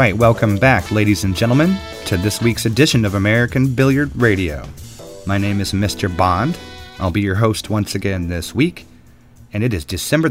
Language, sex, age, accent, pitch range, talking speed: English, male, 30-49, American, 100-120 Hz, 185 wpm